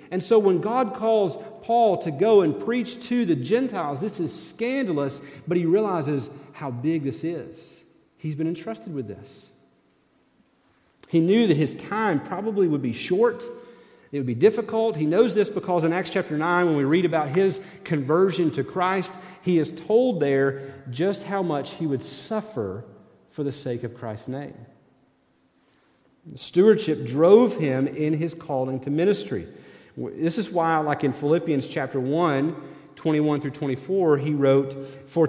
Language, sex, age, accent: English, male, 40-59, American